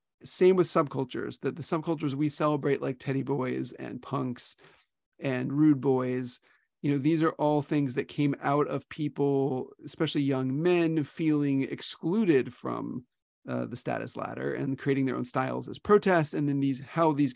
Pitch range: 130-155 Hz